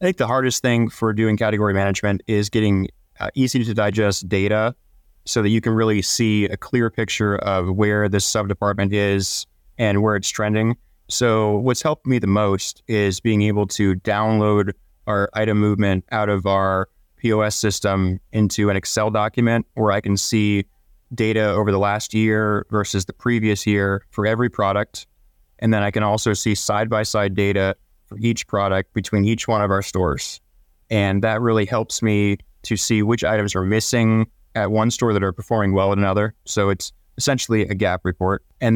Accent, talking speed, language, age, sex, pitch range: American, 180 wpm, English, 20-39, male, 100-110 Hz